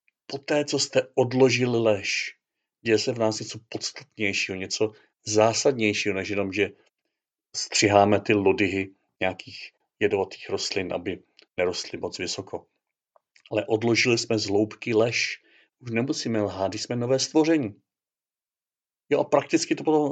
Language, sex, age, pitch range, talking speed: Czech, male, 40-59, 100-130 Hz, 130 wpm